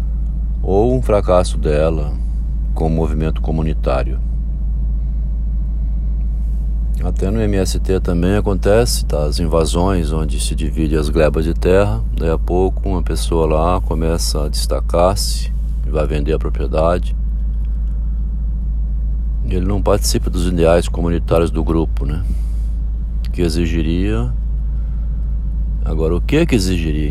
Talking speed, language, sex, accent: 120 wpm, Portuguese, male, Brazilian